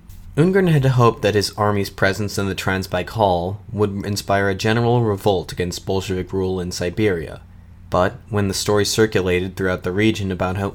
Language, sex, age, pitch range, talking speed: English, male, 30-49, 90-105 Hz, 175 wpm